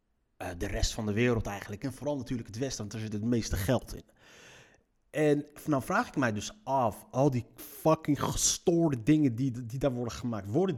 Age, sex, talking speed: 30-49, male, 205 wpm